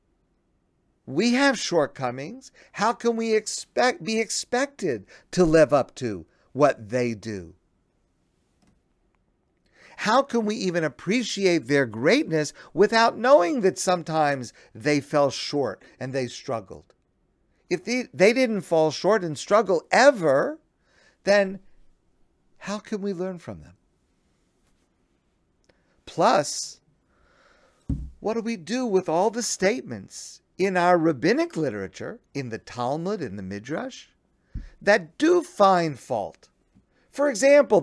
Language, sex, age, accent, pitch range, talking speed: English, male, 50-69, American, 150-235 Hz, 115 wpm